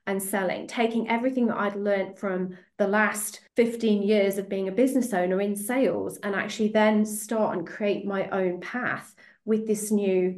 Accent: British